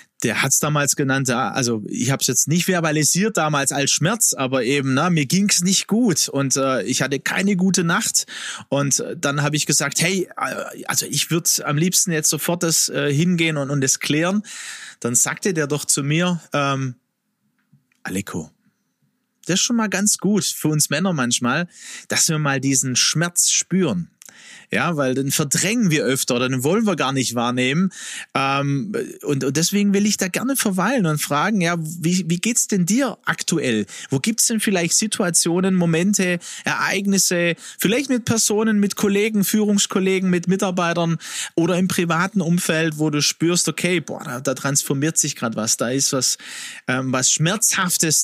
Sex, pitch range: male, 140-190 Hz